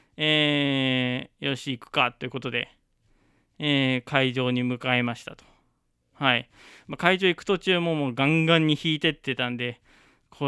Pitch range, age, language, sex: 125-165 Hz, 20-39, Japanese, male